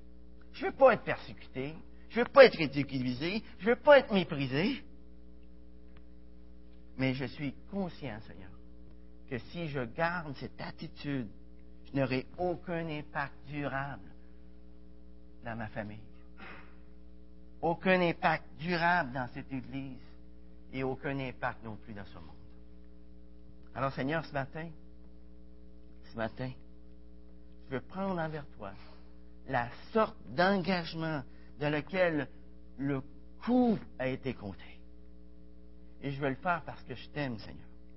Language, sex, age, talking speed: French, male, 50-69, 130 wpm